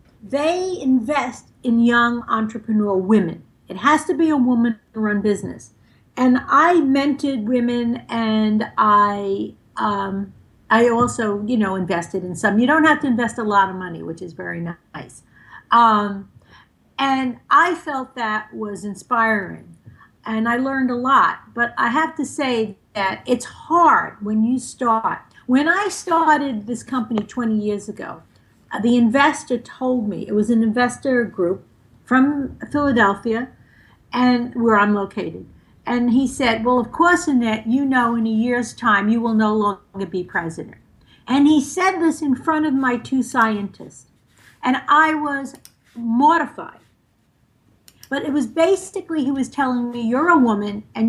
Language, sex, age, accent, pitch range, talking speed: English, female, 50-69, American, 210-270 Hz, 155 wpm